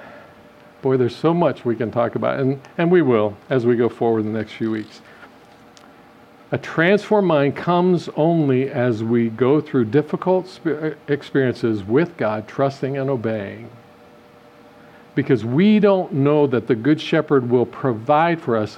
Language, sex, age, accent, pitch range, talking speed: English, male, 50-69, American, 120-150 Hz, 155 wpm